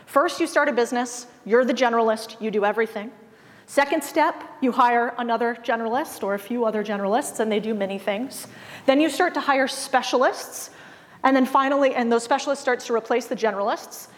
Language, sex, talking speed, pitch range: English, female, 185 wpm, 220-280 Hz